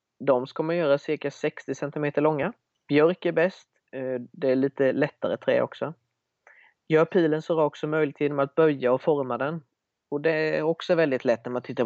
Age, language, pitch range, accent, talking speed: 20-39, Swedish, 125-155 Hz, native, 190 wpm